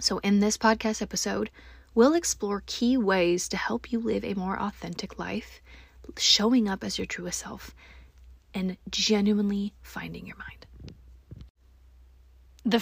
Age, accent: 20-39, American